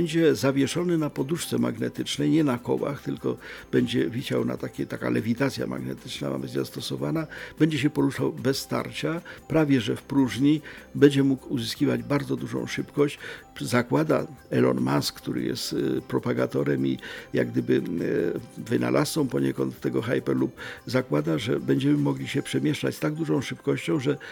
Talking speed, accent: 140 wpm, native